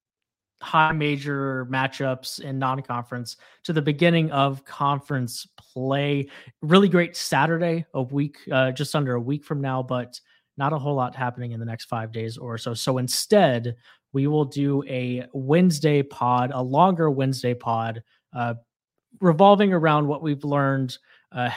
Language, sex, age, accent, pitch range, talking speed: English, male, 30-49, American, 120-145 Hz, 155 wpm